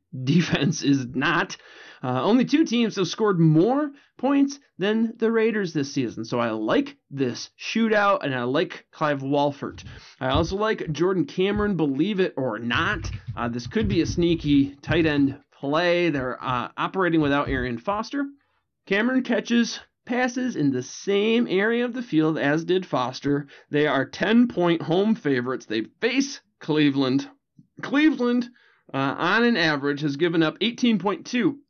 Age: 30-49